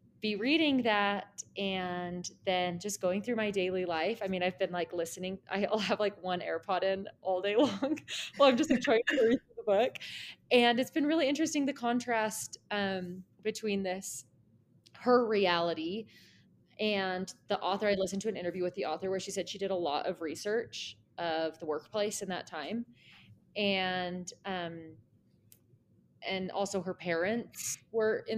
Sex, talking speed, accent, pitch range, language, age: female, 170 wpm, American, 180-220 Hz, English, 20-39